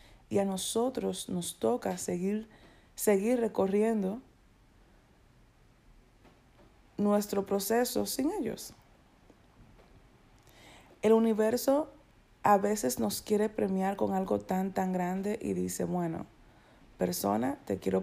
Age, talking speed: 30-49, 100 wpm